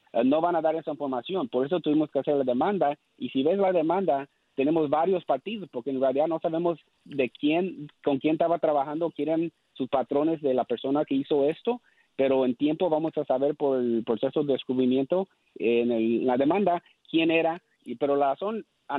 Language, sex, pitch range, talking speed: Spanish, male, 140-170 Hz, 205 wpm